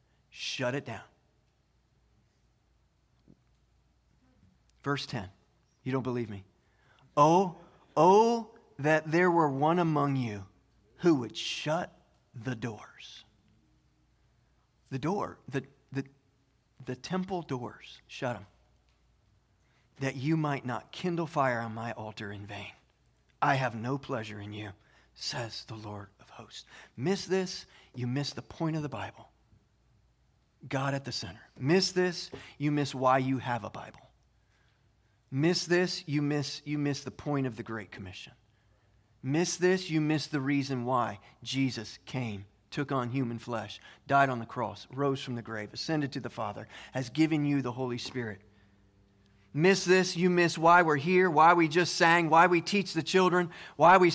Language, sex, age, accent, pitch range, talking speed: English, male, 40-59, American, 115-170 Hz, 150 wpm